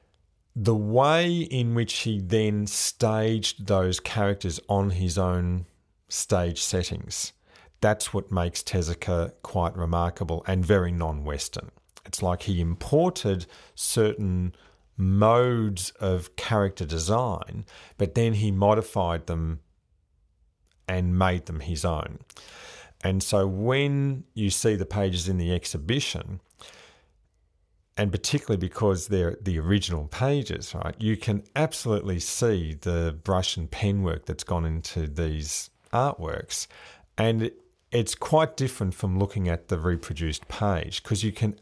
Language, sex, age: English, male, 40-59